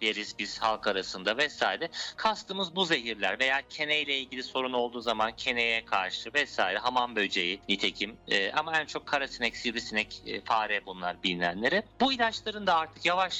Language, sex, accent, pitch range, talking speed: Turkish, male, native, 120-190 Hz, 150 wpm